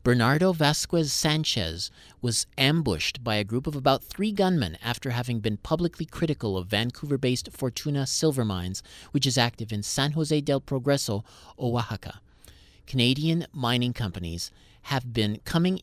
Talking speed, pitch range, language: 140 wpm, 110-145 Hz, English